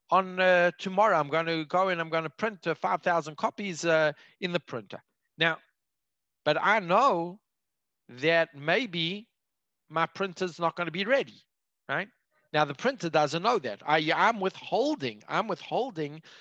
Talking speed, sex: 160 wpm, male